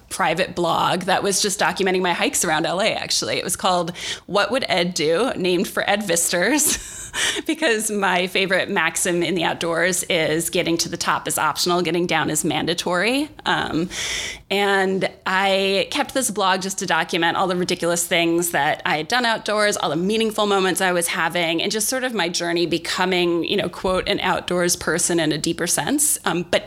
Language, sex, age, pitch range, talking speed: English, female, 20-39, 175-215 Hz, 190 wpm